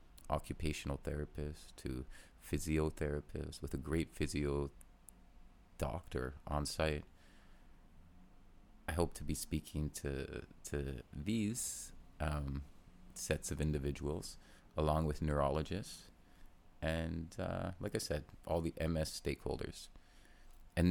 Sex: male